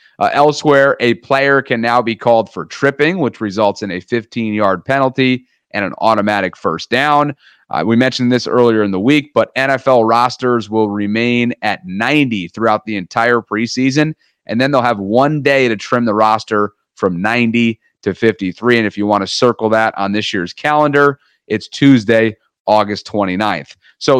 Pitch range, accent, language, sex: 110-130 Hz, American, English, male